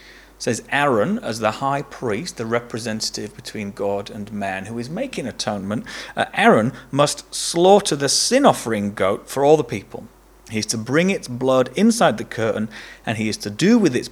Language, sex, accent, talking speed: English, male, British, 185 wpm